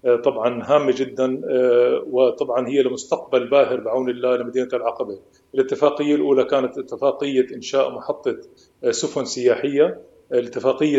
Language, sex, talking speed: Arabic, male, 110 wpm